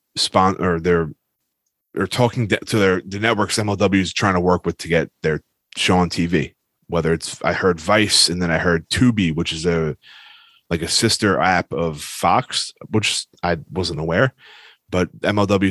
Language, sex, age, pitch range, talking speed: English, male, 20-39, 85-105 Hz, 175 wpm